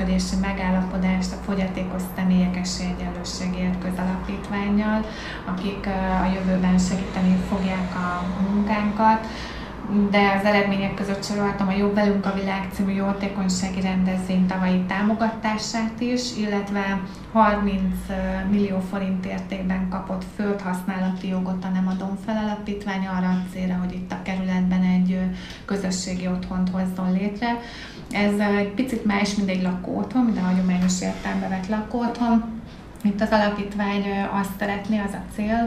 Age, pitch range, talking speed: 20-39, 185-205 Hz, 125 wpm